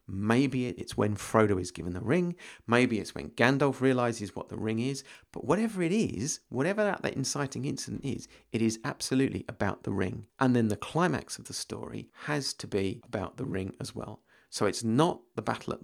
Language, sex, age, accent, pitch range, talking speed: English, male, 40-59, British, 105-135 Hz, 205 wpm